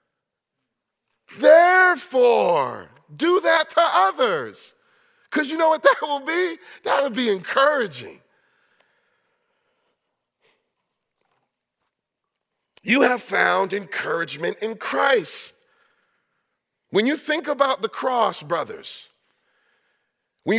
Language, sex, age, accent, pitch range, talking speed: English, male, 40-59, American, 215-305 Hz, 85 wpm